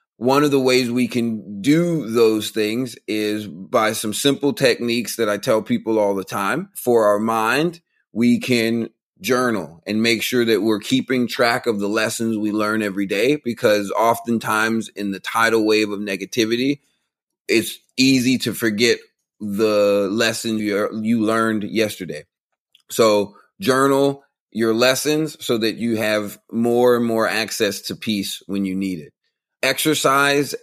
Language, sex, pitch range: English, male, 105-125 Hz